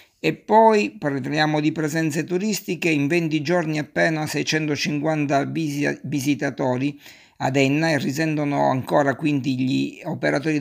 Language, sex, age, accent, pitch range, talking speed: Italian, male, 50-69, native, 135-160 Hz, 115 wpm